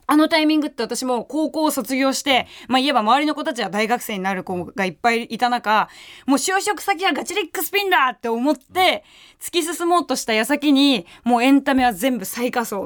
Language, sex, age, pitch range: Japanese, female, 20-39, 210-290 Hz